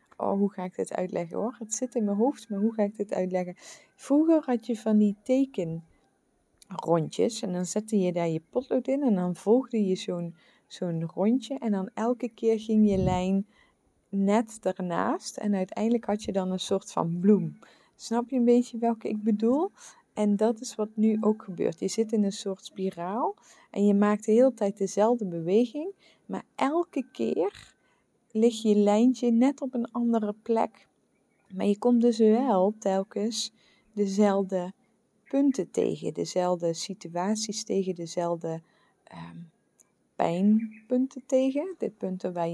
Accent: Dutch